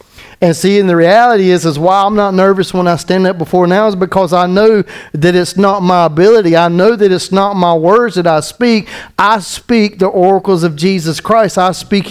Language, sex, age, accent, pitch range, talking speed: English, male, 40-59, American, 160-205 Hz, 225 wpm